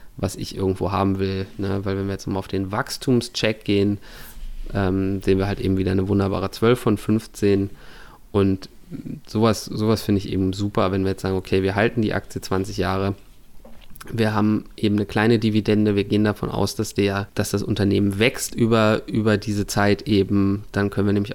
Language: German